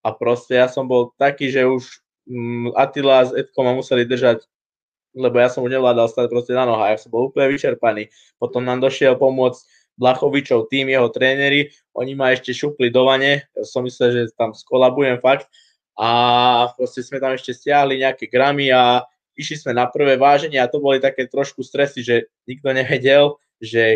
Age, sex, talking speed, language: 20-39, male, 185 wpm, Czech